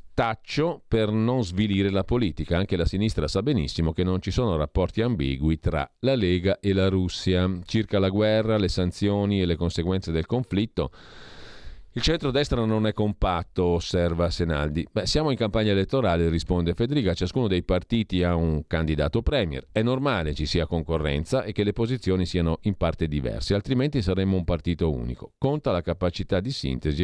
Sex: male